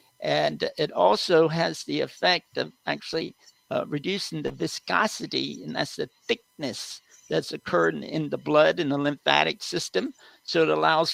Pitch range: 140-175 Hz